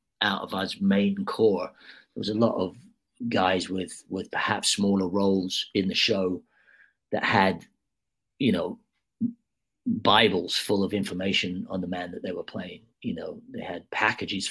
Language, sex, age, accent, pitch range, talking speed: English, male, 40-59, British, 95-110 Hz, 160 wpm